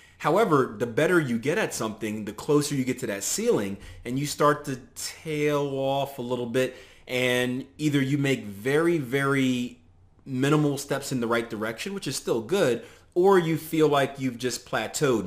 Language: English